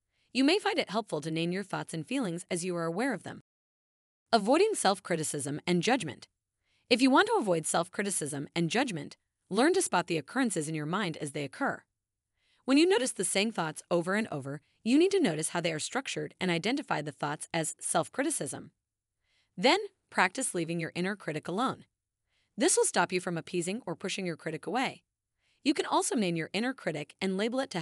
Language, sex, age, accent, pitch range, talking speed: English, female, 30-49, American, 160-250 Hz, 200 wpm